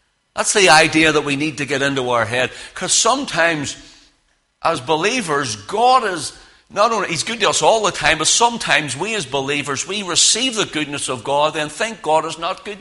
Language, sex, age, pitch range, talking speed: English, male, 60-79, 125-205 Hz, 195 wpm